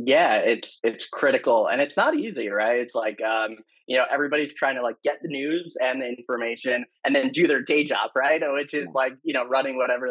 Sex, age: male, 20-39